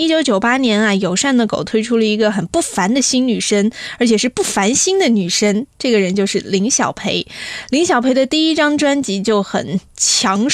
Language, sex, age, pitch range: Chinese, female, 20-39, 205-265 Hz